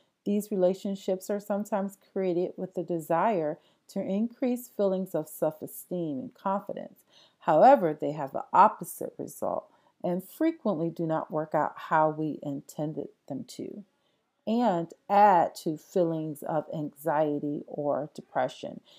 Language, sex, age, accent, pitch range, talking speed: English, female, 40-59, American, 155-205 Hz, 125 wpm